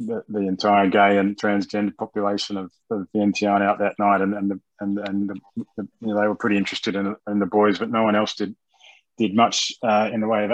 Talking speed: 245 wpm